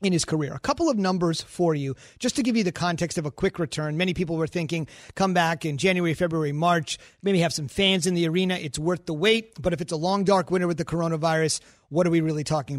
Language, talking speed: English, 260 wpm